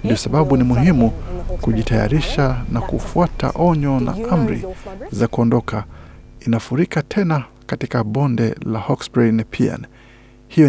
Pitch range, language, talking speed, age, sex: 115-140 Hz, Swahili, 120 wpm, 50-69, male